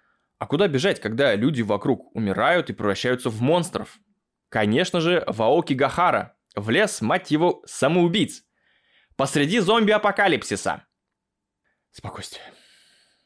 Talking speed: 105 wpm